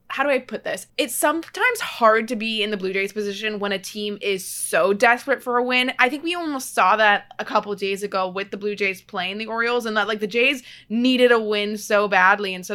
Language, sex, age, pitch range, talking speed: English, female, 20-39, 195-235 Hz, 255 wpm